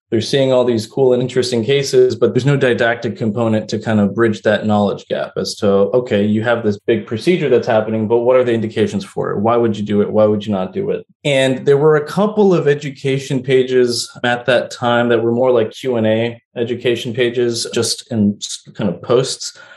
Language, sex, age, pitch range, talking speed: English, male, 20-39, 110-130 Hz, 215 wpm